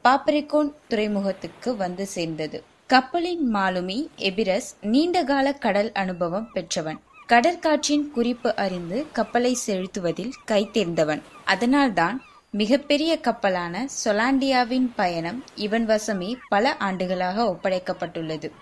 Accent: native